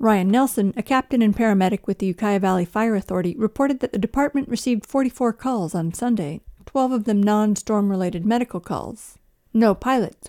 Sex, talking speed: female, 170 wpm